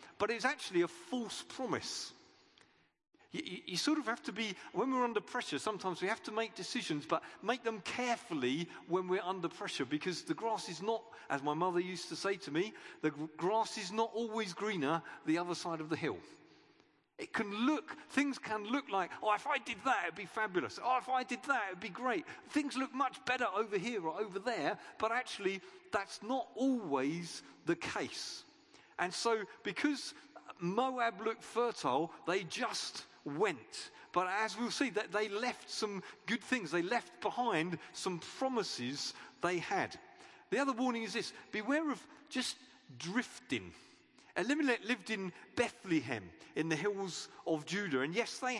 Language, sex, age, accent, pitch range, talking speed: English, male, 50-69, British, 180-260 Hz, 175 wpm